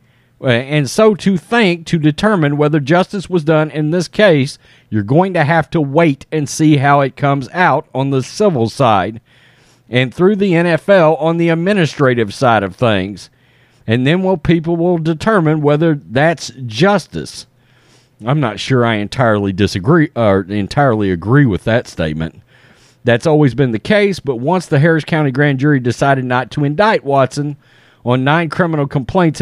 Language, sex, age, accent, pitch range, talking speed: English, male, 40-59, American, 125-170 Hz, 165 wpm